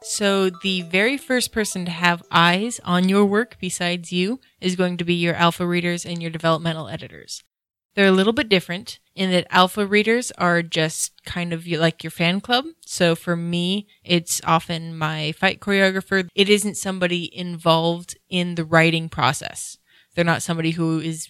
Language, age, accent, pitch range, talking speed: English, 20-39, American, 160-185 Hz, 175 wpm